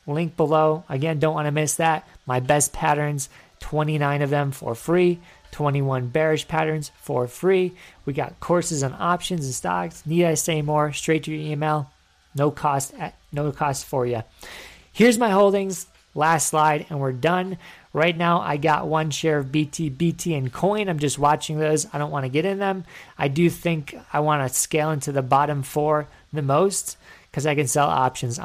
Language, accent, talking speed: English, American, 190 wpm